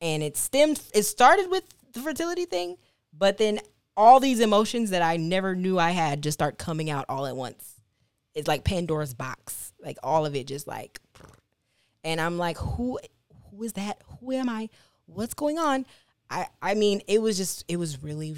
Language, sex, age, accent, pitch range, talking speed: English, female, 20-39, American, 135-190 Hz, 195 wpm